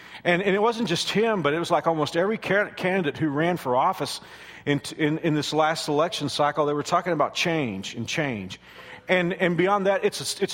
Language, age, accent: English, 50-69, American